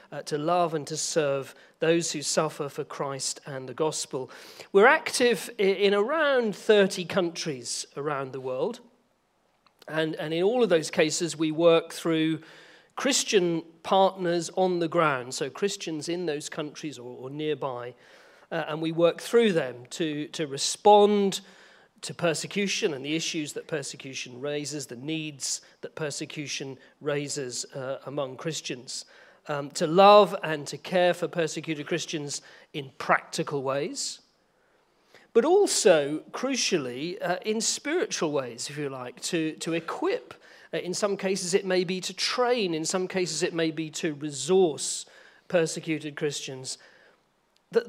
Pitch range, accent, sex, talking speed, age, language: 145-190 Hz, British, male, 145 wpm, 40-59, English